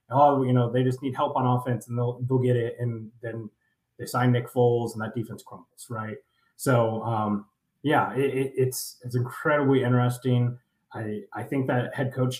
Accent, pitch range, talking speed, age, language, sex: American, 115-135 Hz, 195 wpm, 20-39, English, male